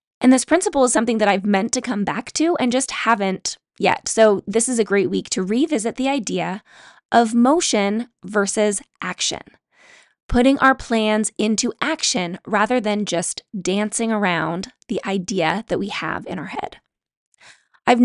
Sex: female